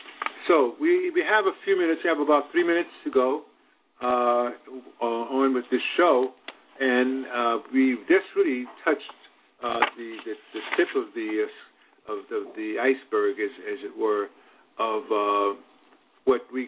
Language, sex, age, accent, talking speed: English, male, 50-69, American, 165 wpm